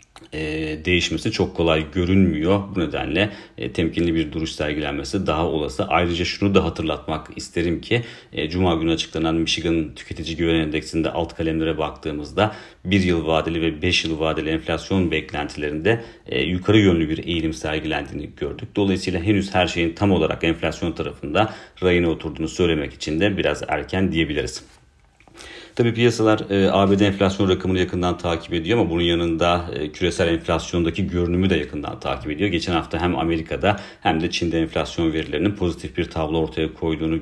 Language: Turkish